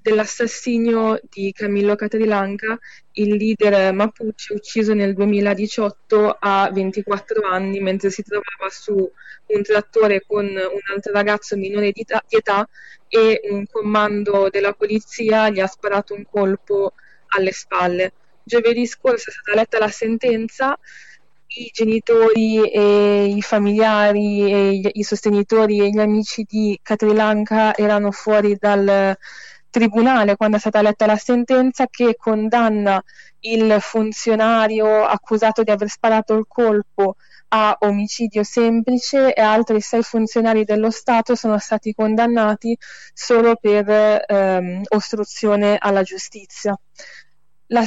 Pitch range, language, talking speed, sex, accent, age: 205-225 Hz, Italian, 125 wpm, female, native, 20-39